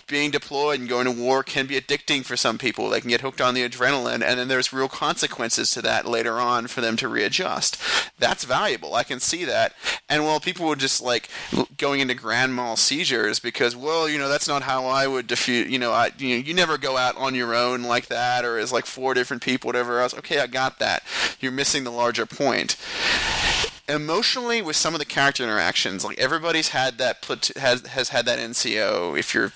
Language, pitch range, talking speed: English, 120-145 Hz, 220 wpm